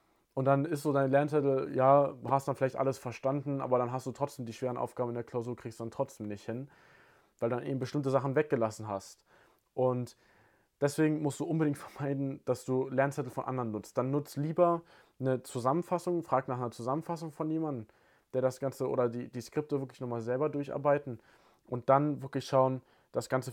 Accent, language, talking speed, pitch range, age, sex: German, German, 195 wpm, 120-140 Hz, 20-39, male